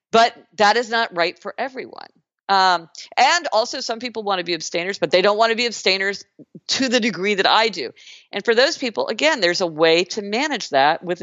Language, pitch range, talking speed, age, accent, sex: English, 180-255 Hz, 220 wpm, 50-69, American, female